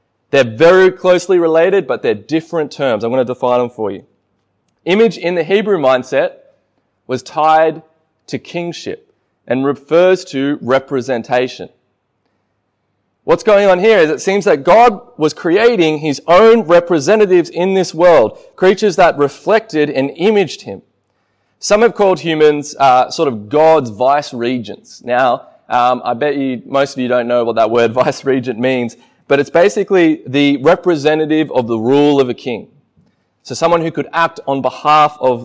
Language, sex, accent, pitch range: English, male, Australian, 130-185 Hz